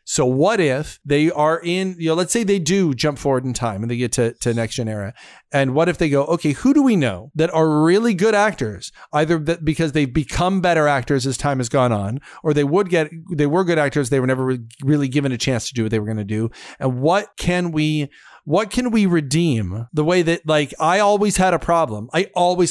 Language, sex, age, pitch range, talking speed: English, male, 40-59, 135-175 Hz, 245 wpm